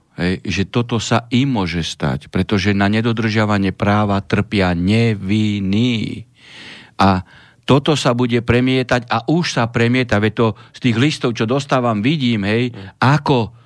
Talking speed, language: 135 wpm, Slovak